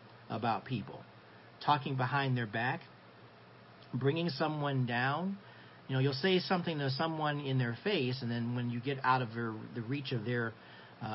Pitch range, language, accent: 115-140 Hz, English, American